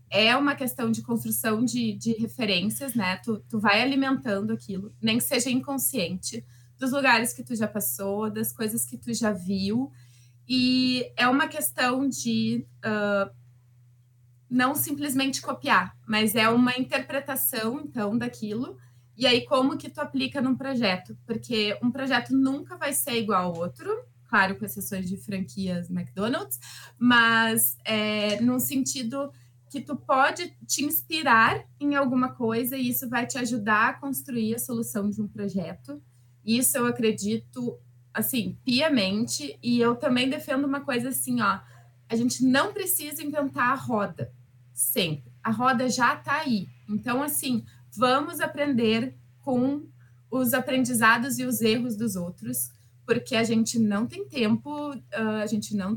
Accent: Brazilian